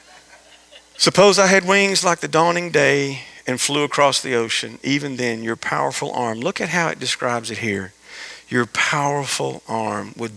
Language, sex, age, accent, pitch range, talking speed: English, male, 40-59, American, 120-185 Hz, 170 wpm